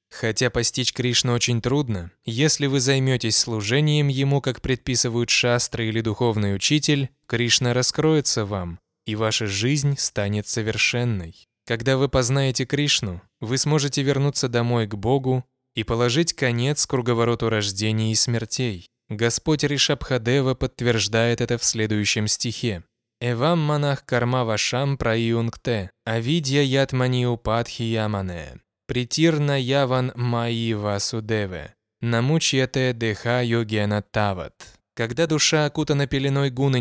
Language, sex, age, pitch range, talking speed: Russian, male, 20-39, 110-135 Hz, 100 wpm